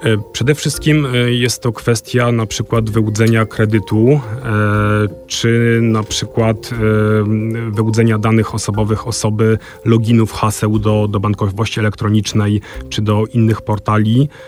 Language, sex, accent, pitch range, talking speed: Polish, male, native, 105-115 Hz, 110 wpm